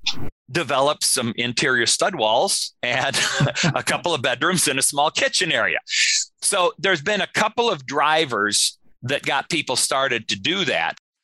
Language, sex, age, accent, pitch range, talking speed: English, male, 40-59, American, 115-150 Hz, 155 wpm